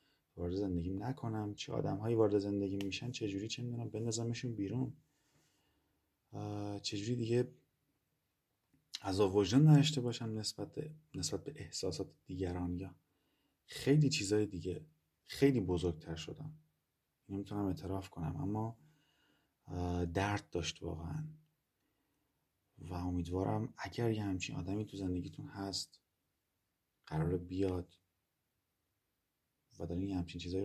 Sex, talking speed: male, 110 wpm